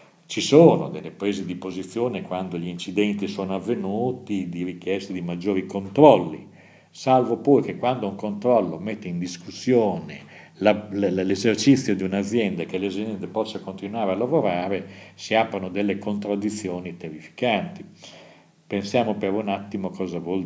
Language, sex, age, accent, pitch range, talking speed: Italian, male, 50-69, native, 90-115 Hz, 130 wpm